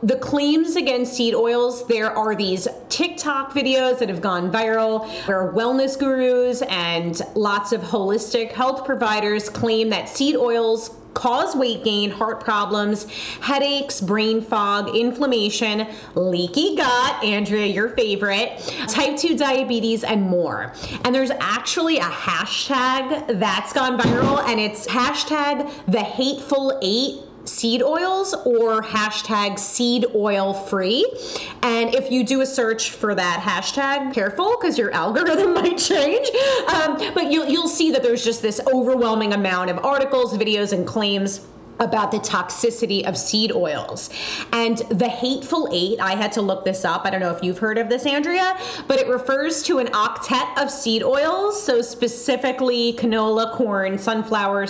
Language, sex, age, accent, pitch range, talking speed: English, female, 30-49, American, 205-270 Hz, 150 wpm